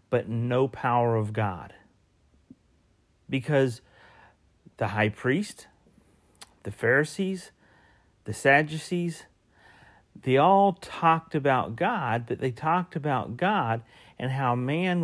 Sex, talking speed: male, 105 wpm